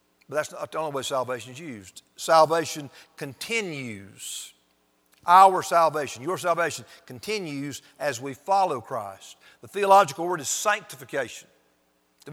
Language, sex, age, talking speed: English, male, 50-69, 125 wpm